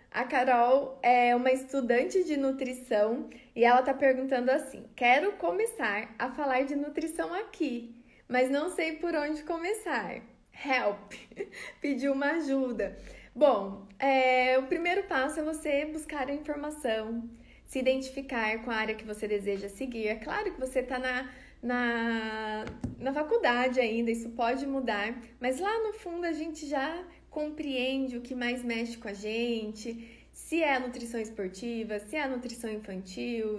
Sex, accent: female, Brazilian